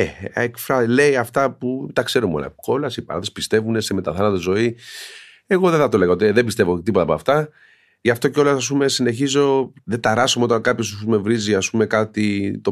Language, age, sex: Greek, 40-59, male